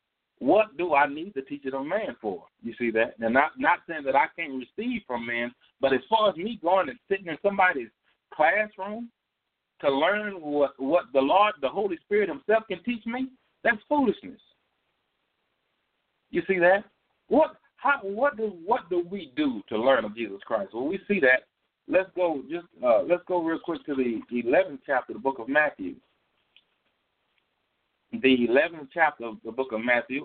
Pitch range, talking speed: 125-215 Hz, 185 wpm